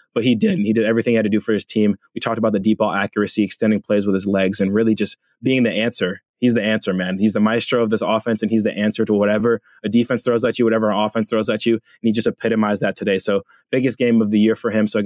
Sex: male